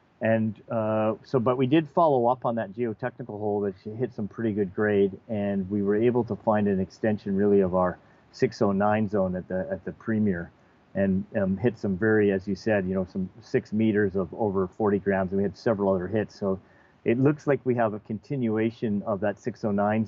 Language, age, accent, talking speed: English, 40-59, American, 210 wpm